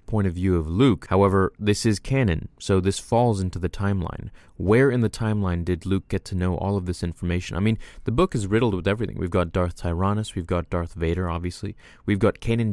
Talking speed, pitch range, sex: 225 wpm, 90-110 Hz, male